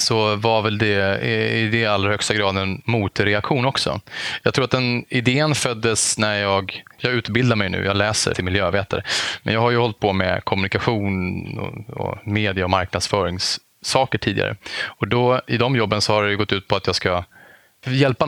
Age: 20-39